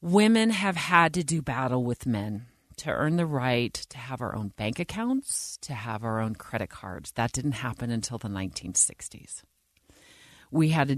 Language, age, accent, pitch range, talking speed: English, 40-59, American, 110-150 Hz, 180 wpm